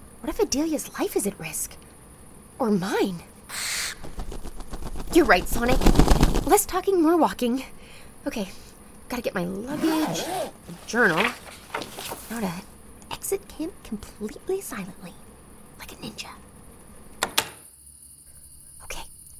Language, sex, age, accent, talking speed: English, female, 30-49, American, 100 wpm